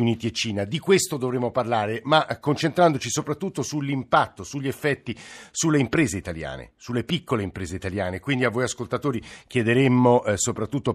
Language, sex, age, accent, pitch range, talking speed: Italian, male, 50-69, native, 110-135 Hz, 145 wpm